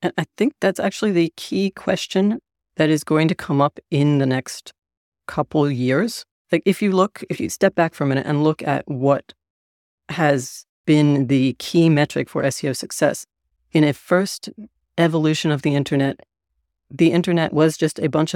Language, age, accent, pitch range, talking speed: English, 40-59, American, 135-160 Hz, 185 wpm